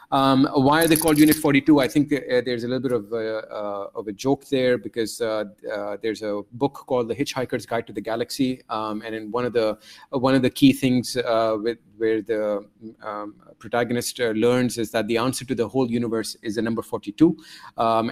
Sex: male